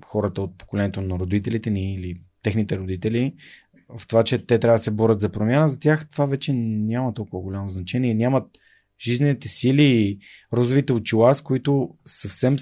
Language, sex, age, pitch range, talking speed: Bulgarian, male, 30-49, 105-130 Hz, 170 wpm